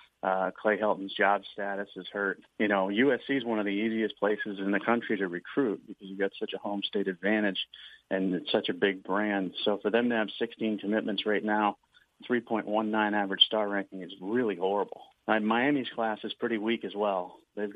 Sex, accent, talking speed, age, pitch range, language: male, American, 200 wpm, 40-59, 100-115 Hz, English